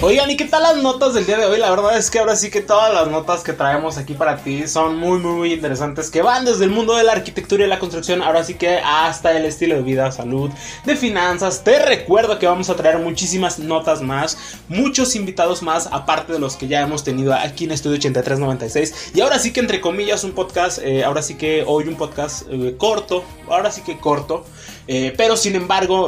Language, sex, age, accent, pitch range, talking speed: Spanish, male, 20-39, Mexican, 150-205 Hz, 230 wpm